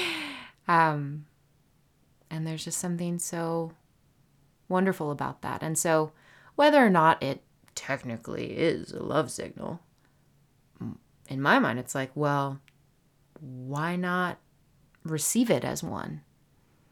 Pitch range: 140-165 Hz